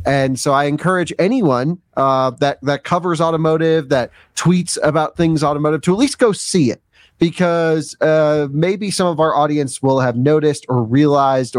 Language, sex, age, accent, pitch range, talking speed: English, male, 30-49, American, 130-160 Hz, 170 wpm